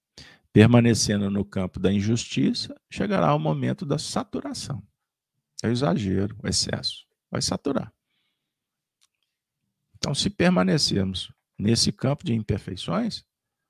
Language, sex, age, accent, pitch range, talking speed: Portuguese, male, 50-69, Brazilian, 95-120 Hz, 105 wpm